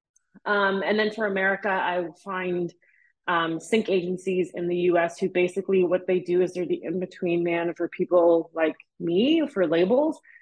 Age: 30-49